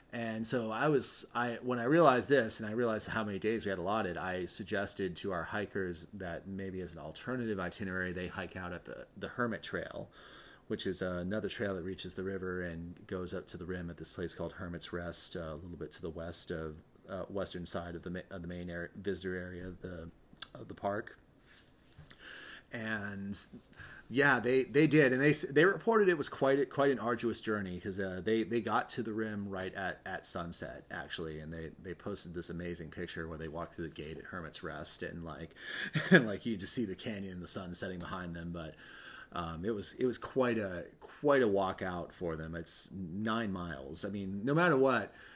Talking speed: 215 wpm